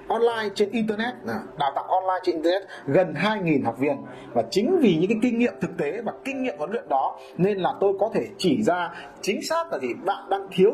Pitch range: 185-240 Hz